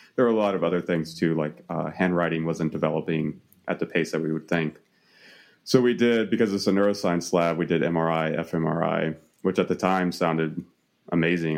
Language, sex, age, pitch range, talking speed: English, male, 30-49, 85-95 Hz, 185 wpm